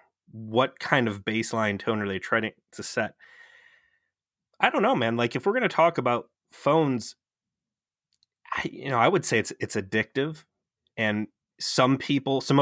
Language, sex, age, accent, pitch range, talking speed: English, male, 20-39, American, 105-135 Hz, 165 wpm